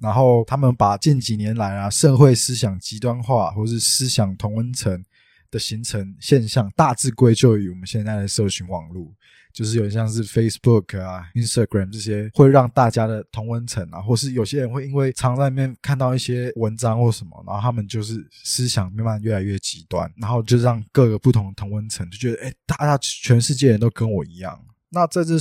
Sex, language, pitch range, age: male, Chinese, 100-125 Hz, 20-39